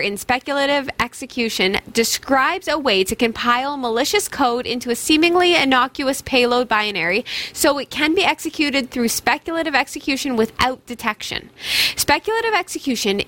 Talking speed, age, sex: 125 wpm, 20-39, female